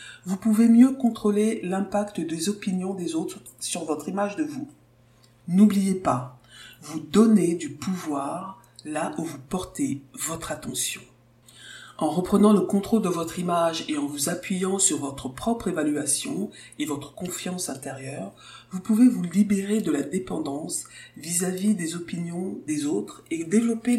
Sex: female